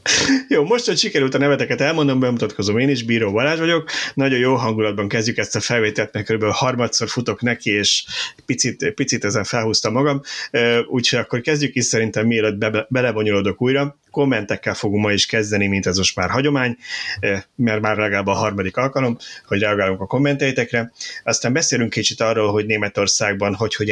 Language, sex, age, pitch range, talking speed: Hungarian, male, 30-49, 105-130 Hz, 170 wpm